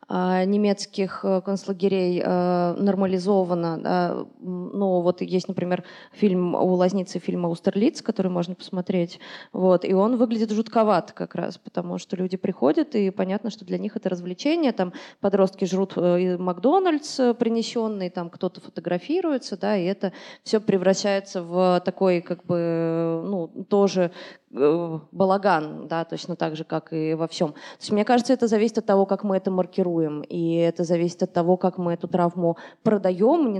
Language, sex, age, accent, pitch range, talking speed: Russian, female, 20-39, native, 175-205 Hz, 155 wpm